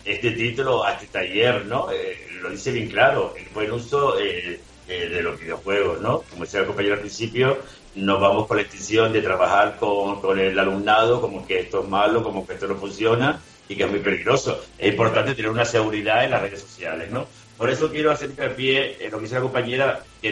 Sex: male